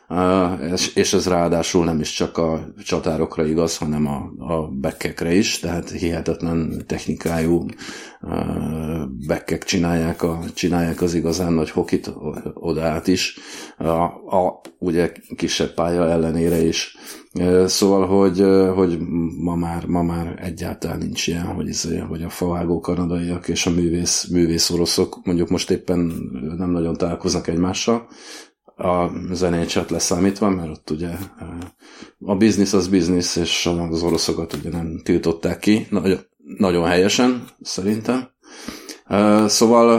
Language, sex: Hungarian, male